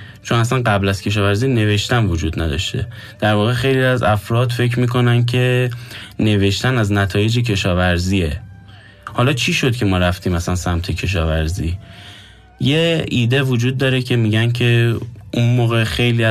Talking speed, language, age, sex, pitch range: 145 wpm, Persian, 10-29, male, 95-120 Hz